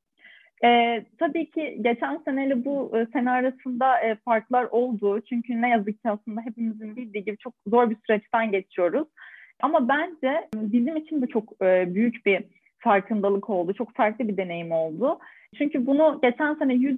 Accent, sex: native, female